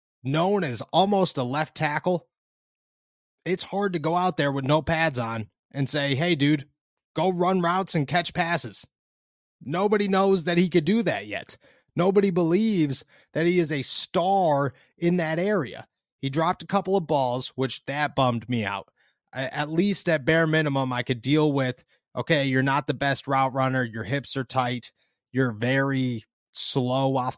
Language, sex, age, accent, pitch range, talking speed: English, male, 30-49, American, 125-170 Hz, 175 wpm